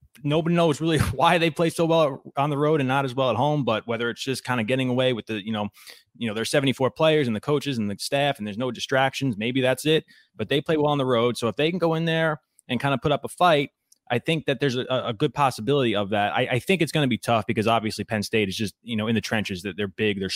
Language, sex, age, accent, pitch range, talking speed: English, male, 20-39, American, 105-130 Hz, 300 wpm